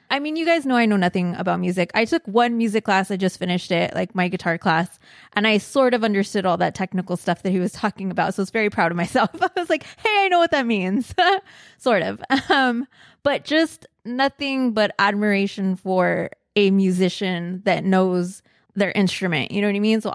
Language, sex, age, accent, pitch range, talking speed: English, female, 20-39, American, 190-240 Hz, 220 wpm